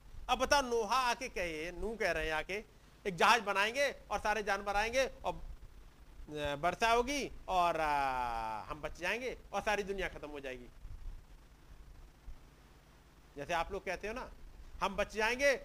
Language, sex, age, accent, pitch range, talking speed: Hindi, male, 50-69, native, 150-245 Hz, 150 wpm